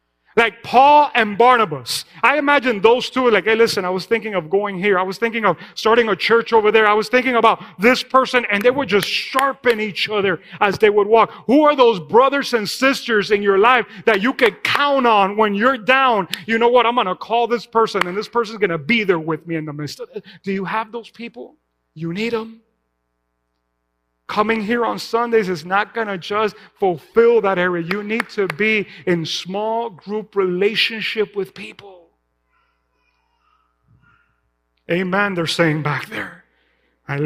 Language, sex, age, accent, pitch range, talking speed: English, male, 40-59, American, 175-235 Hz, 190 wpm